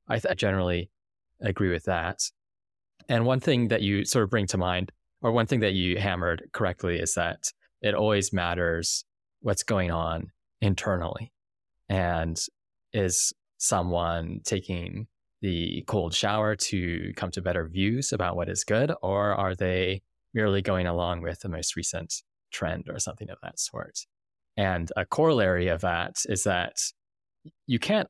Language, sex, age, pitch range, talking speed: English, male, 20-39, 90-105 Hz, 155 wpm